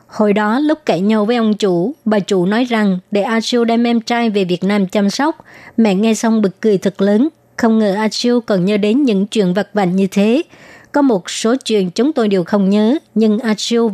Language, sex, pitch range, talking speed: Vietnamese, male, 200-235 Hz, 225 wpm